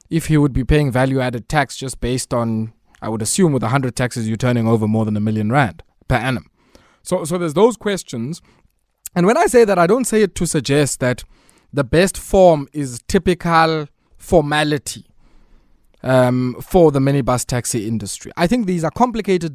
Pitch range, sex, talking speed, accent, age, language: 125-170 Hz, male, 185 wpm, South African, 20-39, English